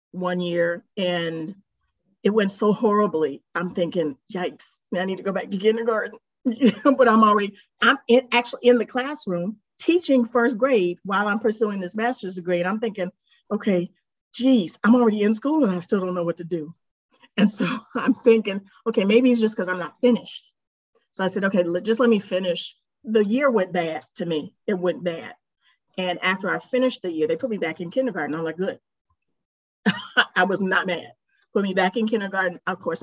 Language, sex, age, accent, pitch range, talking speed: English, female, 40-59, American, 170-220 Hz, 195 wpm